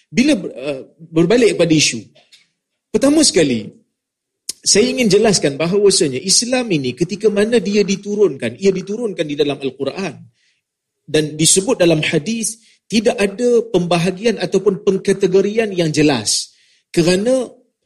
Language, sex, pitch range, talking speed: Malay, male, 175-230 Hz, 110 wpm